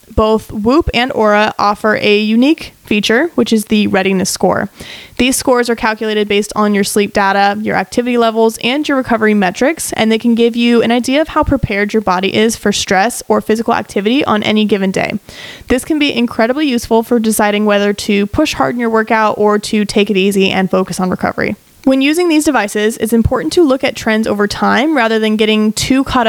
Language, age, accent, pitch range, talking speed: English, 20-39, American, 210-250 Hz, 210 wpm